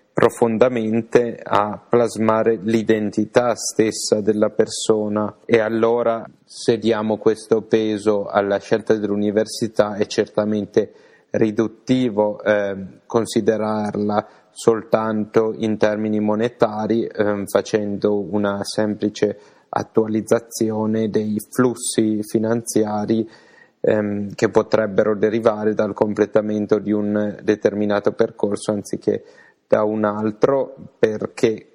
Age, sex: 30-49, male